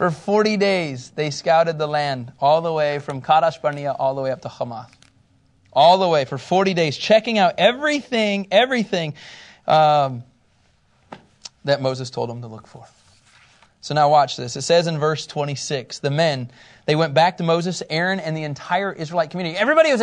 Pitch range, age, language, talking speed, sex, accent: 140-205 Hz, 30-49, English, 185 wpm, male, American